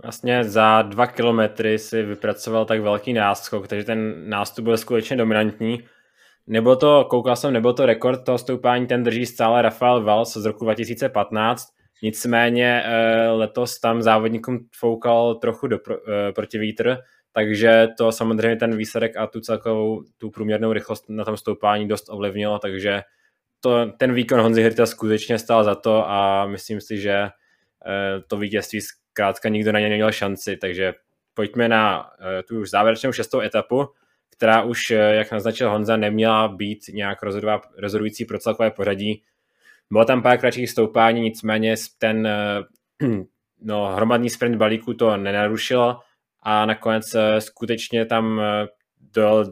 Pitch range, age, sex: 105-115 Hz, 20-39, male